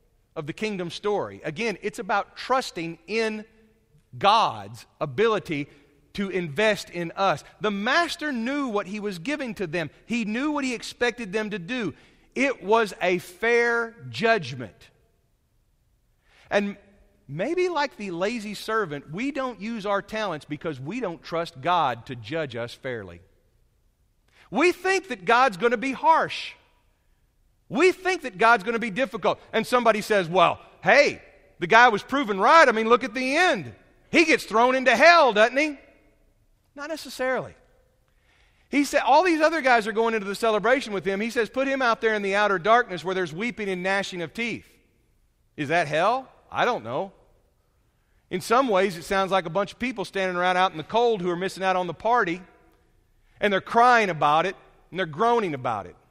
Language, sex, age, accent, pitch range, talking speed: English, male, 40-59, American, 175-245 Hz, 180 wpm